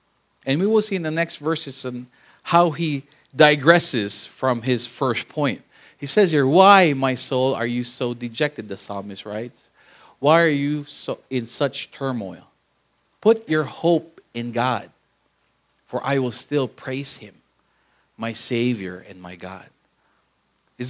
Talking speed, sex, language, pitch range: 150 wpm, male, English, 115-155 Hz